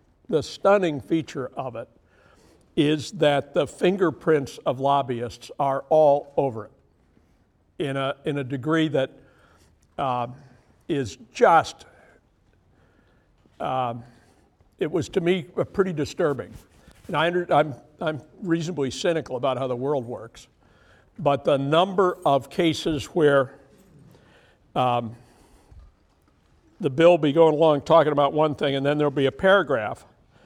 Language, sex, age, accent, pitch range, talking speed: English, male, 60-79, American, 130-160 Hz, 130 wpm